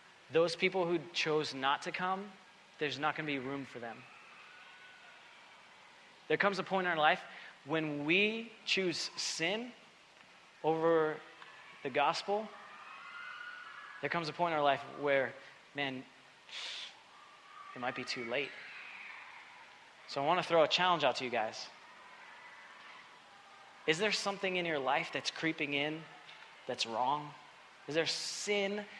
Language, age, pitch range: English, 30-49, 140-175 Hz